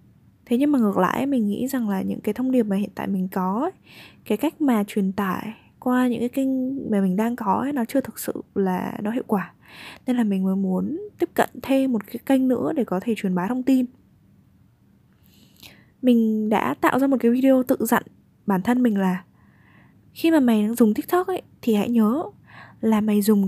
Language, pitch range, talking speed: Vietnamese, 195-250 Hz, 215 wpm